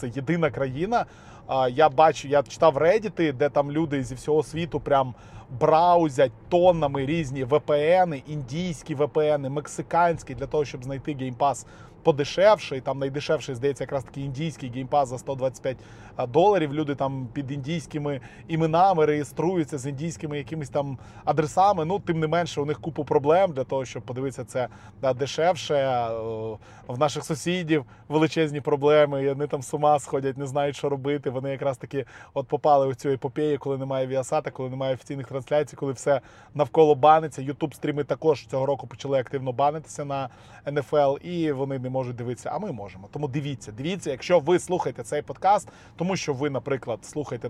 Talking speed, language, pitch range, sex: 165 wpm, Russian, 130-160 Hz, male